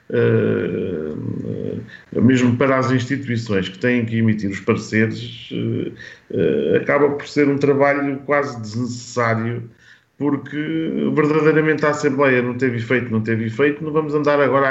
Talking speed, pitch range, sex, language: 125 wpm, 115-140 Hz, male, Portuguese